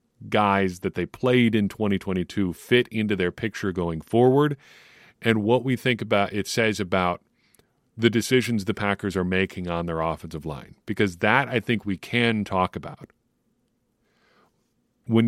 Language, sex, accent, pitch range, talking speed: English, male, American, 95-115 Hz, 155 wpm